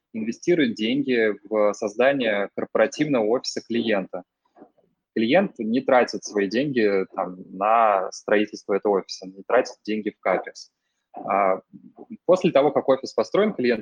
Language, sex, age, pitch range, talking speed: Russian, male, 20-39, 105-125 Hz, 120 wpm